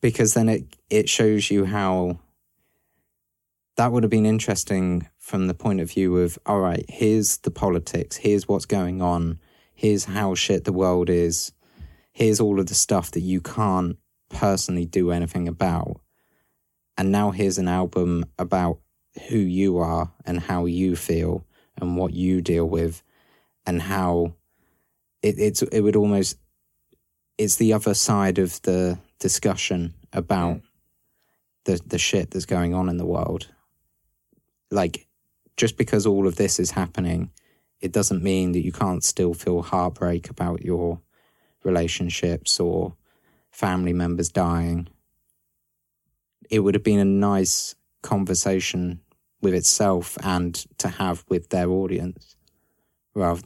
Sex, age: male, 20-39